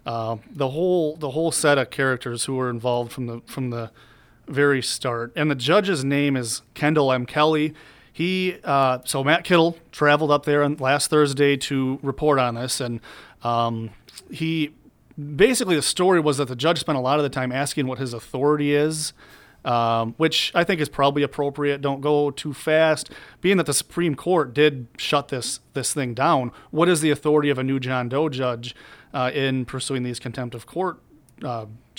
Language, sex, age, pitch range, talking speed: English, male, 30-49, 125-150 Hz, 190 wpm